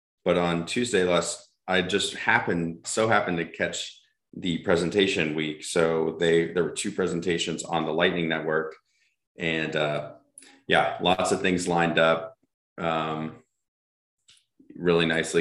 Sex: male